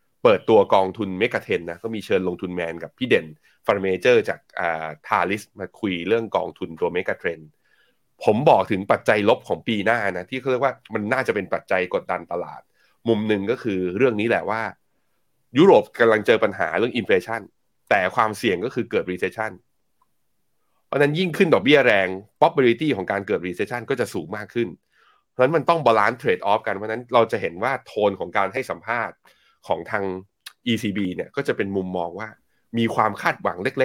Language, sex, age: Thai, male, 20-39